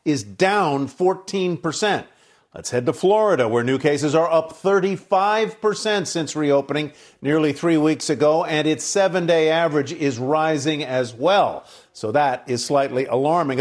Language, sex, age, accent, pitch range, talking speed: English, male, 50-69, American, 150-195 Hz, 140 wpm